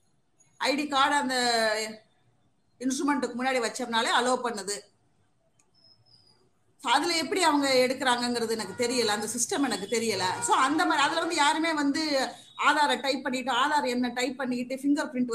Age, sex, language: 30-49, female, Tamil